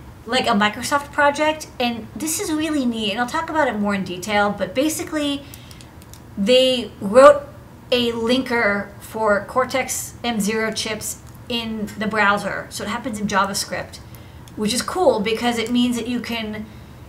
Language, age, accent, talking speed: English, 40-59, American, 155 wpm